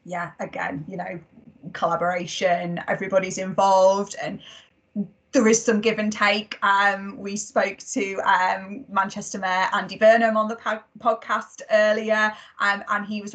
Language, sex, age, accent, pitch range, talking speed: English, female, 20-39, British, 195-225 Hz, 145 wpm